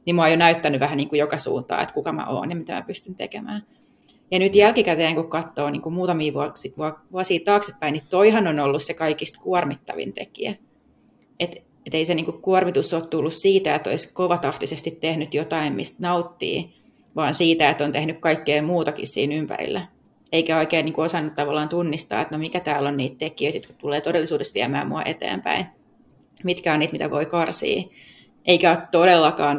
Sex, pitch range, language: female, 150-175 Hz, Finnish